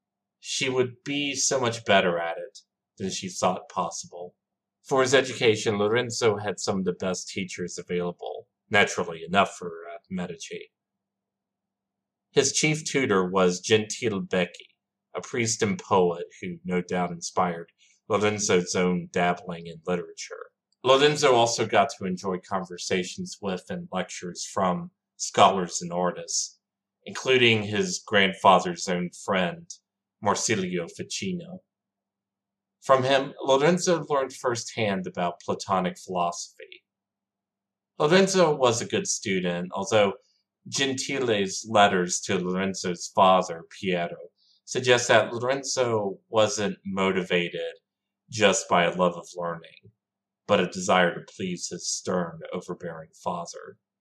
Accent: American